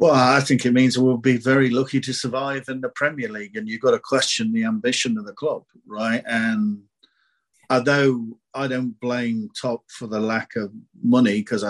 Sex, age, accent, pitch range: male, 50-69, British, 110-140 Hz